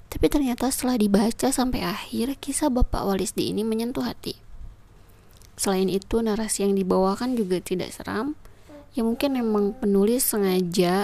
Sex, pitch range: female, 180-230 Hz